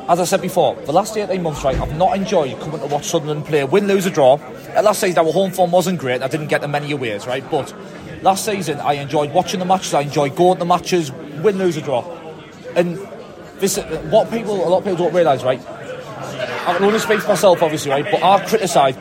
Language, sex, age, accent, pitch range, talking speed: English, male, 30-49, British, 160-195 Hz, 235 wpm